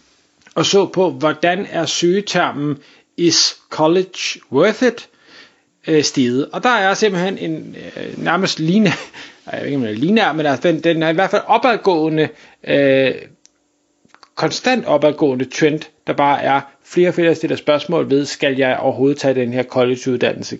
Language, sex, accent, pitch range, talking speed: Danish, male, native, 150-195 Hz, 135 wpm